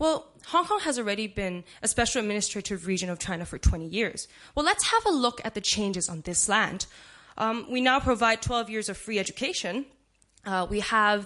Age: 10-29